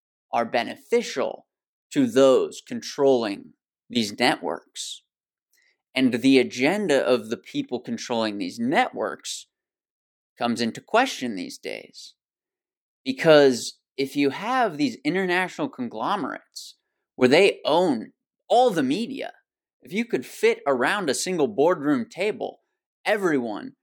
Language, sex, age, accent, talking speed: English, male, 30-49, American, 110 wpm